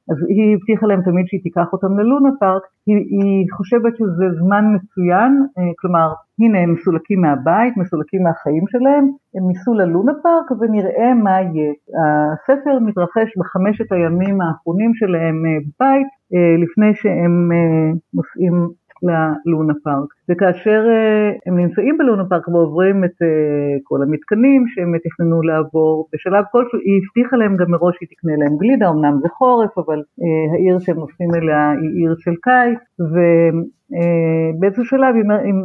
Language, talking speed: Hebrew, 140 wpm